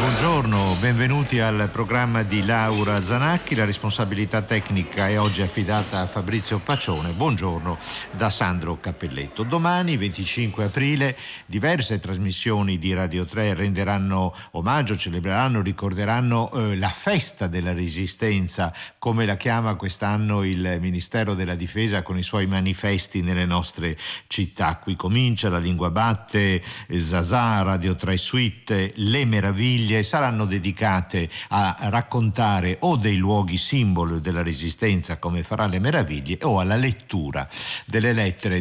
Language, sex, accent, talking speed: Italian, male, native, 130 wpm